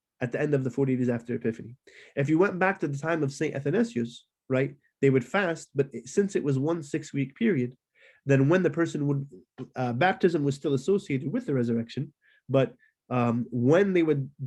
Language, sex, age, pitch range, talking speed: English, male, 30-49, 125-150 Hz, 205 wpm